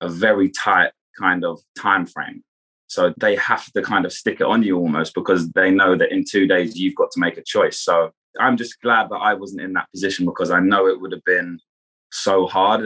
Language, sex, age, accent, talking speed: English, male, 20-39, British, 235 wpm